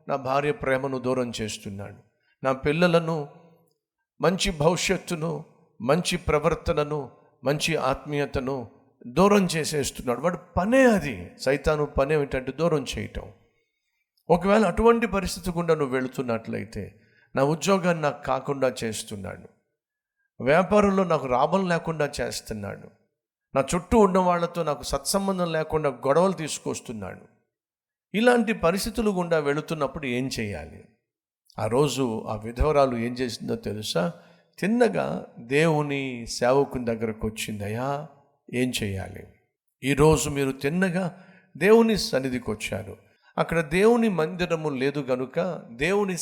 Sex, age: male, 50-69